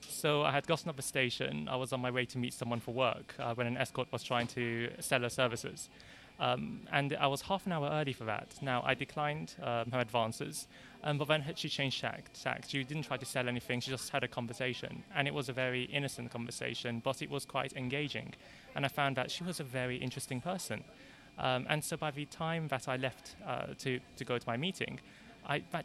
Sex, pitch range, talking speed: male, 125-150 Hz, 230 wpm